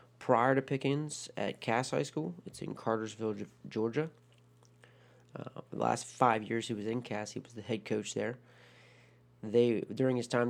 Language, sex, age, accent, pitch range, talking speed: English, male, 30-49, American, 95-120 Hz, 170 wpm